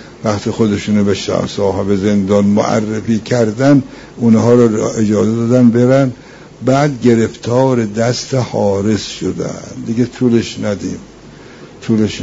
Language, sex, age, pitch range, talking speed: Persian, male, 60-79, 100-120 Hz, 110 wpm